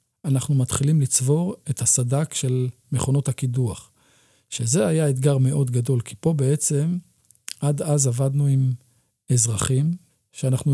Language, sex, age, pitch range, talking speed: Hebrew, male, 40-59, 125-145 Hz, 125 wpm